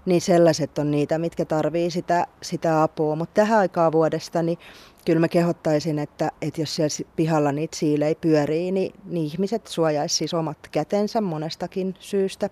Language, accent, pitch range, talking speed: Finnish, native, 155-175 Hz, 165 wpm